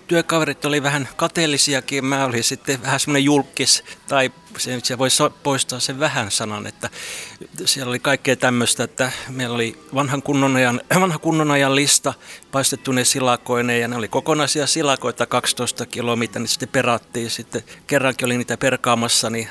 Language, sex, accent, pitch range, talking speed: Finnish, male, native, 120-140 Hz, 155 wpm